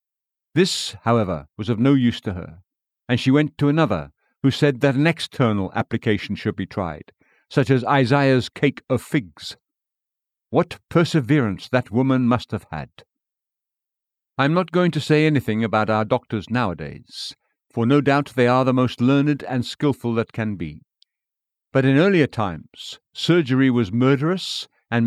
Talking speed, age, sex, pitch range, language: 160 wpm, 60-79, male, 110-145 Hz, English